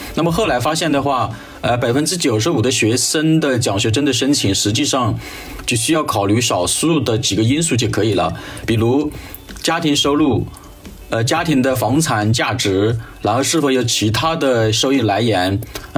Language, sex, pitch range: Chinese, male, 105-135 Hz